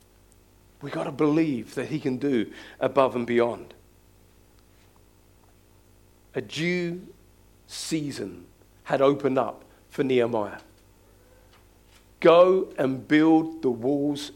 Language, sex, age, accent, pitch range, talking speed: English, male, 50-69, British, 140-190 Hz, 100 wpm